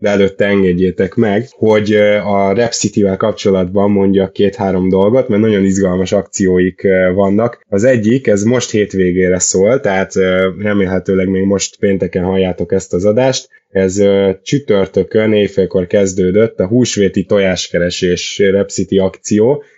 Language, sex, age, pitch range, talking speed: Hungarian, male, 10-29, 100-115 Hz, 120 wpm